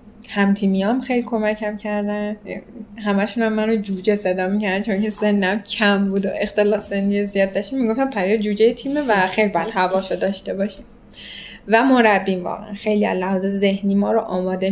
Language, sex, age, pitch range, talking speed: Persian, female, 10-29, 195-220 Hz, 165 wpm